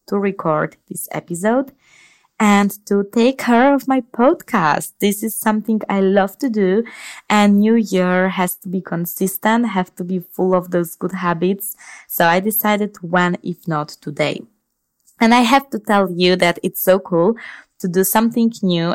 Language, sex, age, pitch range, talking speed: English, female, 20-39, 165-210 Hz, 170 wpm